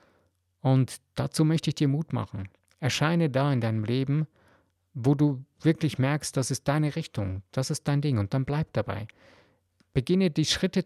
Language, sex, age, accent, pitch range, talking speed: German, male, 50-69, German, 125-160 Hz, 170 wpm